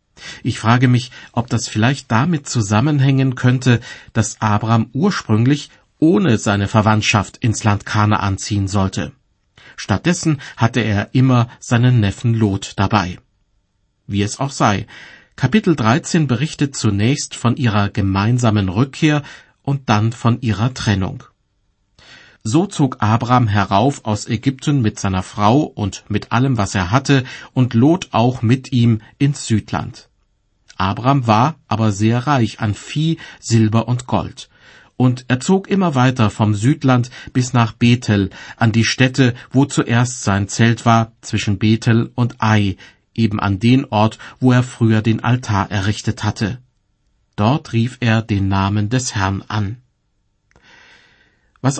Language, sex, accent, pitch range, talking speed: German, male, German, 105-130 Hz, 140 wpm